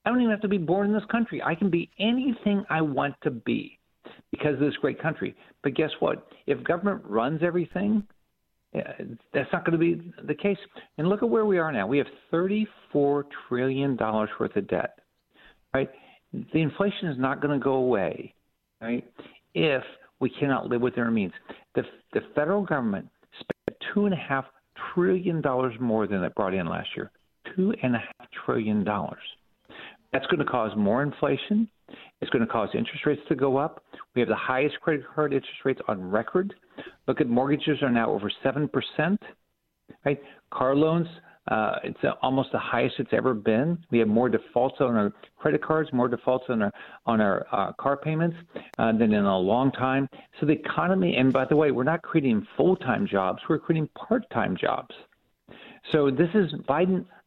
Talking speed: 185 wpm